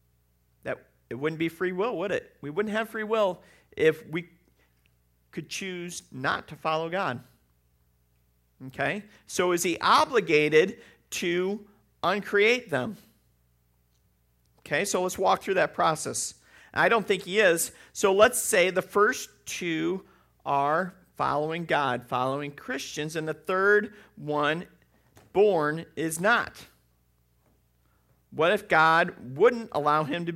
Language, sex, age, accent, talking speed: English, male, 40-59, American, 130 wpm